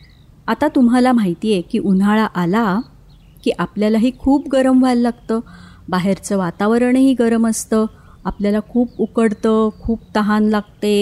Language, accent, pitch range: Marathi, native, 190-230 Hz